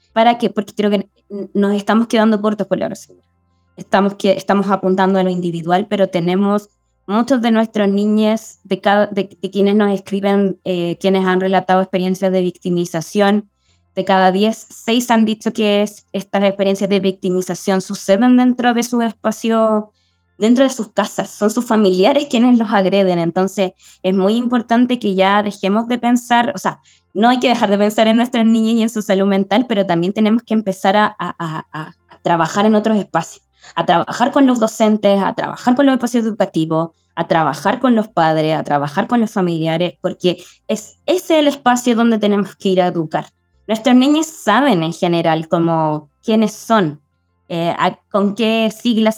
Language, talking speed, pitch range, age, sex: English, 180 wpm, 185-220 Hz, 20-39, female